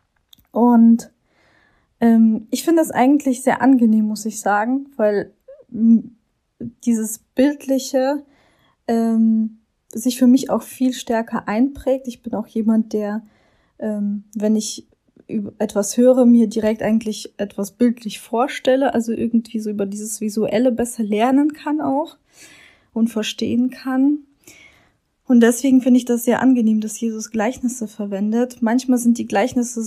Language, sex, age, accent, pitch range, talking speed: German, female, 20-39, German, 210-245 Hz, 135 wpm